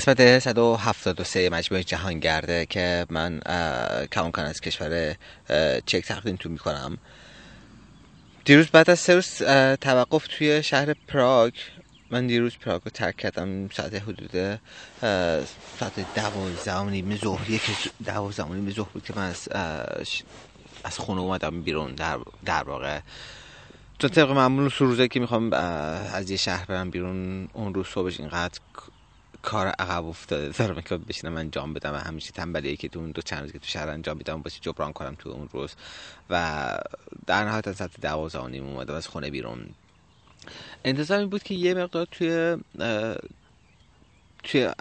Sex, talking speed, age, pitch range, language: male, 145 wpm, 30-49, 80-115 Hz, Persian